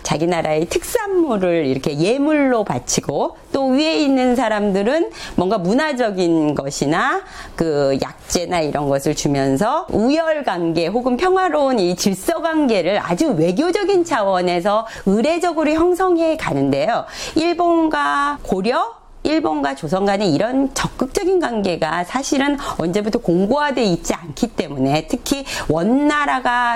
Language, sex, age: Korean, female, 40-59